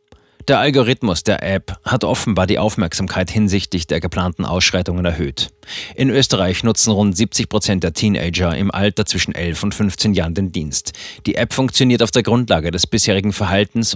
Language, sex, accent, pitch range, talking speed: German, male, German, 95-115 Hz, 165 wpm